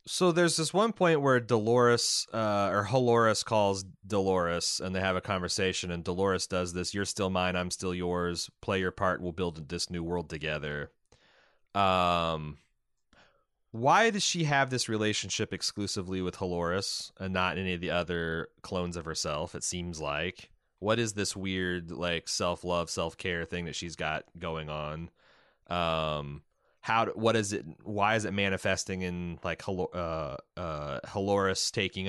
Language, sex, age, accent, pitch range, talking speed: English, male, 30-49, American, 90-110 Hz, 160 wpm